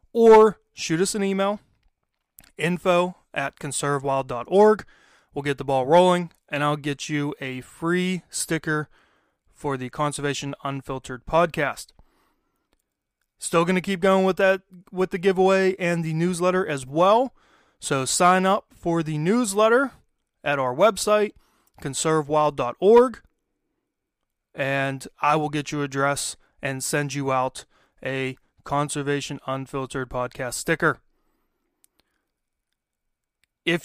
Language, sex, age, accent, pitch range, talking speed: English, male, 30-49, American, 135-175 Hz, 115 wpm